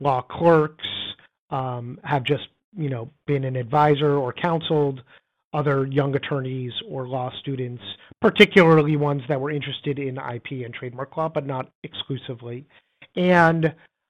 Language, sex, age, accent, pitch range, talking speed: English, male, 30-49, American, 135-160 Hz, 135 wpm